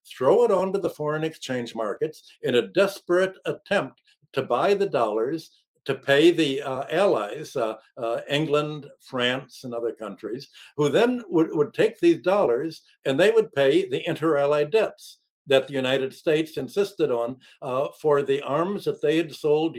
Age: 60-79